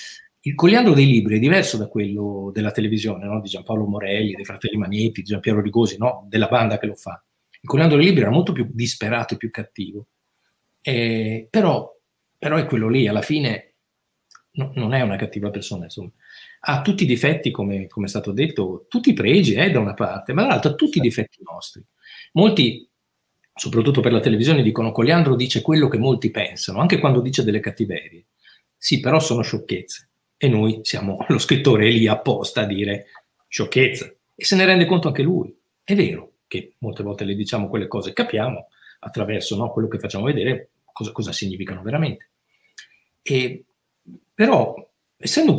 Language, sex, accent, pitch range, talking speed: Italian, male, native, 105-150 Hz, 180 wpm